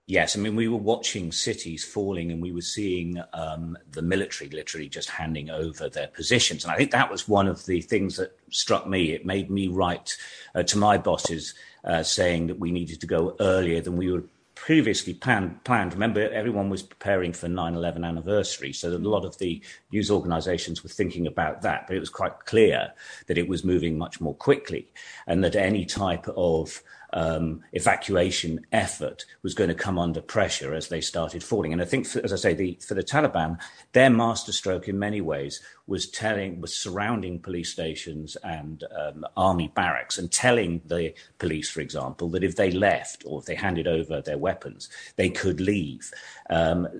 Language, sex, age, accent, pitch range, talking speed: English, male, 40-59, British, 85-100 Hz, 190 wpm